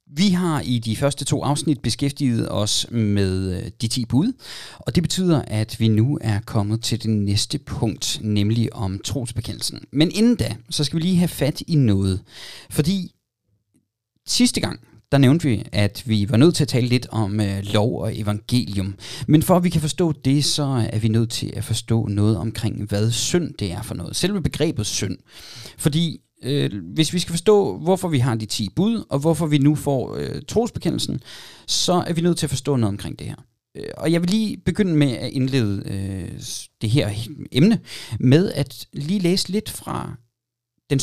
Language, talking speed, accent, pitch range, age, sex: Danish, 195 wpm, native, 110-150 Hz, 30-49, male